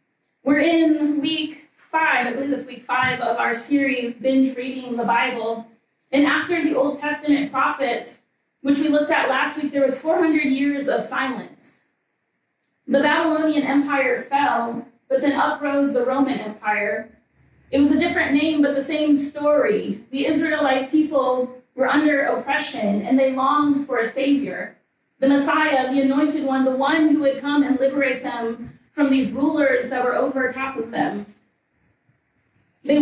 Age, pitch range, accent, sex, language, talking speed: 30-49, 255-295 Hz, American, female, English, 160 wpm